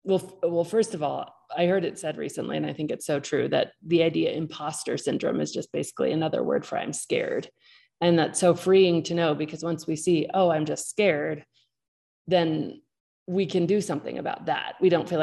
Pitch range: 155-180 Hz